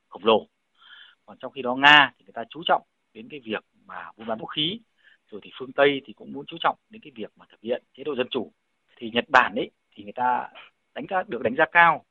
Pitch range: 110-165 Hz